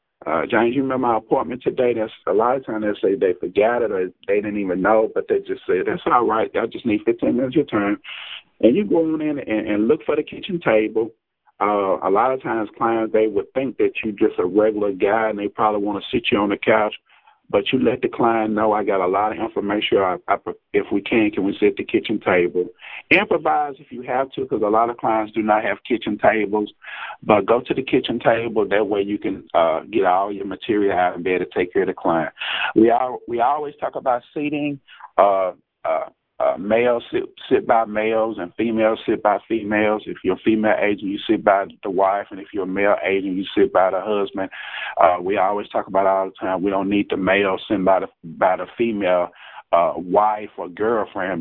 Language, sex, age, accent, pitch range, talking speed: English, male, 50-69, American, 105-155 Hz, 240 wpm